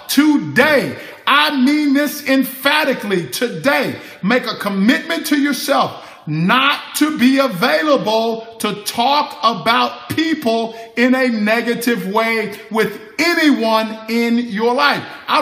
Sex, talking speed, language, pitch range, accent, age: male, 115 wpm, English, 195-255 Hz, American, 50-69